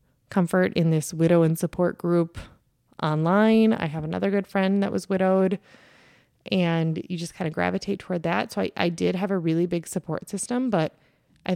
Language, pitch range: English, 160-210 Hz